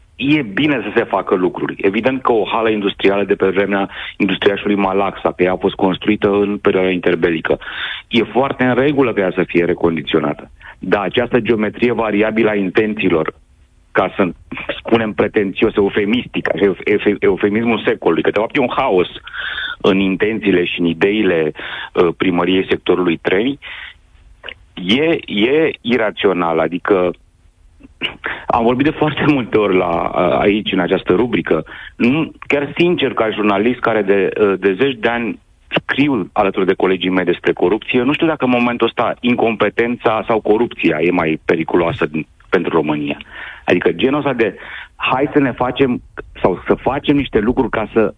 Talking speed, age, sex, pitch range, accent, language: 150 wpm, 40-59, male, 95-125 Hz, native, Romanian